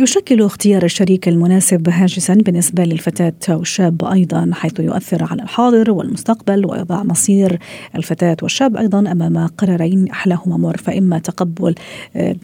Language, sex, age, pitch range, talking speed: Arabic, female, 40-59, 180-220 Hz, 125 wpm